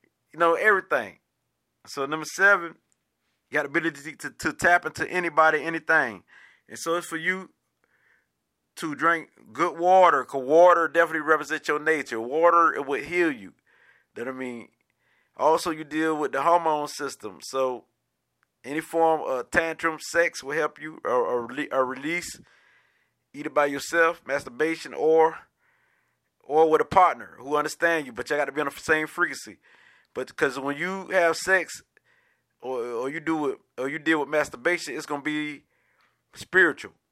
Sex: male